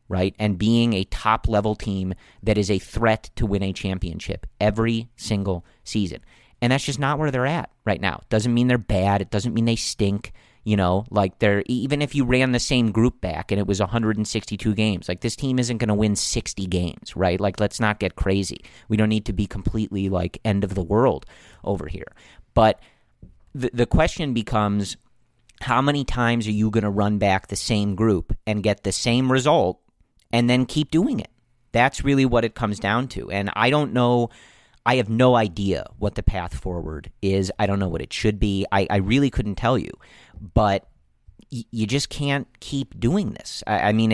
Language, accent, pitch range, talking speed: English, American, 100-125 Hz, 210 wpm